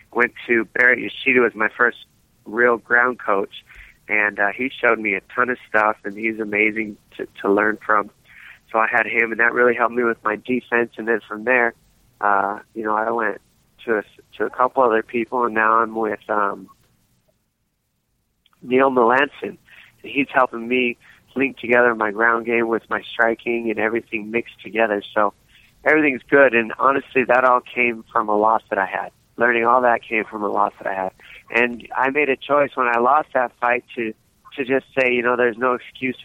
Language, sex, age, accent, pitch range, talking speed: English, male, 30-49, American, 110-125 Hz, 200 wpm